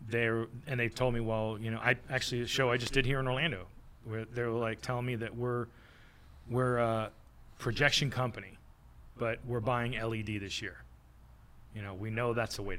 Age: 30-49